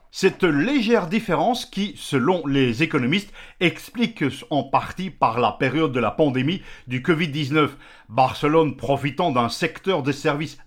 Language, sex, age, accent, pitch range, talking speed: French, male, 50-69, French, 135-175 Hz, 135 wpm